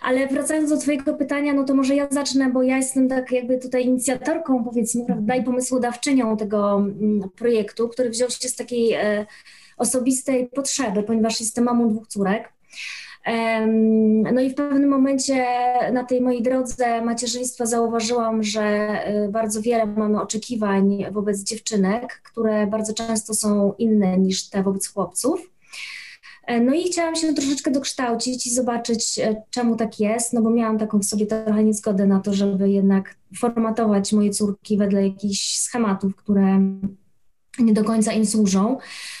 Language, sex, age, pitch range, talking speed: Polish, female, 20-39, 210-250 Hz, 145 wpm